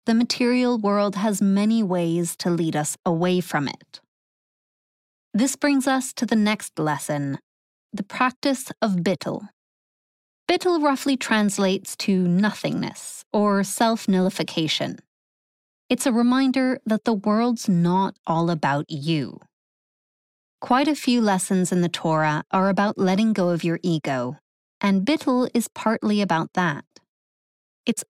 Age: 30-49